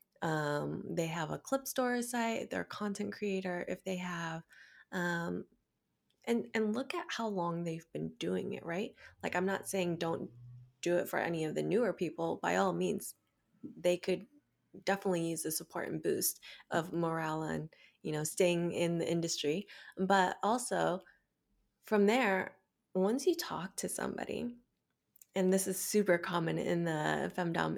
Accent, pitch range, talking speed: American, 170-210 Hz, 165 wpm